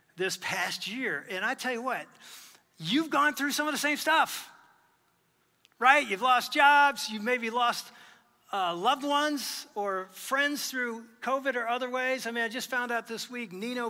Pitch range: 210-265 Hz